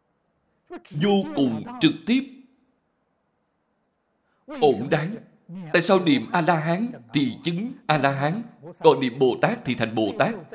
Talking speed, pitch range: 110 wpm, 165-240 Hz